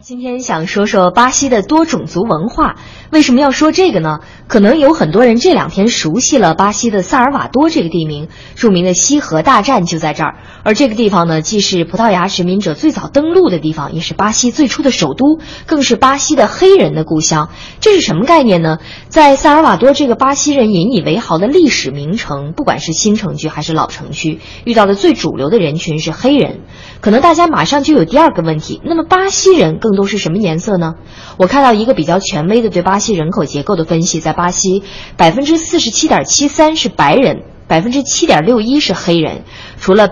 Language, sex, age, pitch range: Chinese, female, 20-39, 170-280 Hz